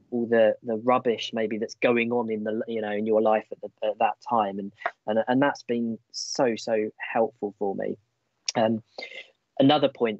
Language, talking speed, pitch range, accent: English, 195 wpm, 105-115 Hz, British